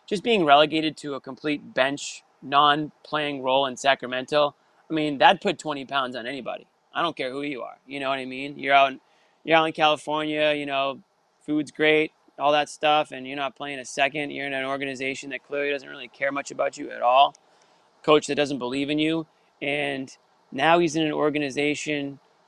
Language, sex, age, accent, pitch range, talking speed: English, male, 30-49, American, 135-155 Hz, 205 wpm